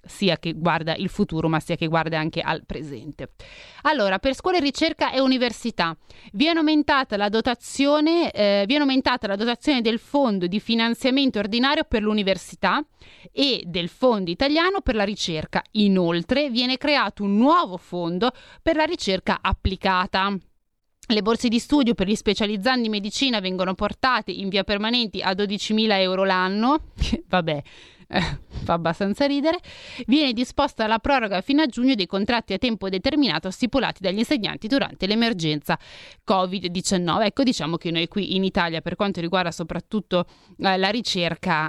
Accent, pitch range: native, 175-255 Hz